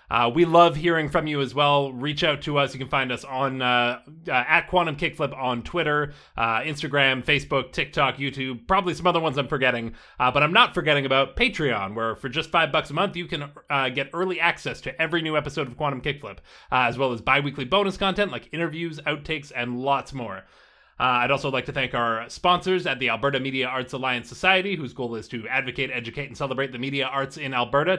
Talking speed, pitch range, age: 220 wpm, 130-170 Hz, 30-49